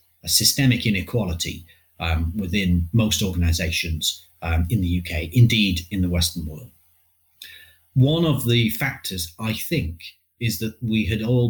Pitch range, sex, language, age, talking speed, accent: 85-115 Hz, male, English, 40-59, 140 wpm, British